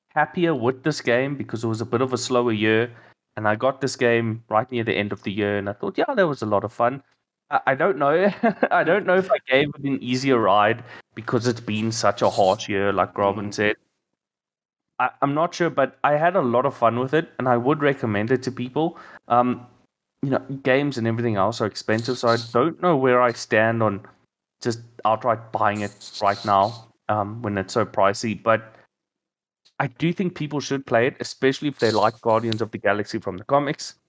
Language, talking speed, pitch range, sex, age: English, 220 wpm, 110-135 Hz, male, 20-39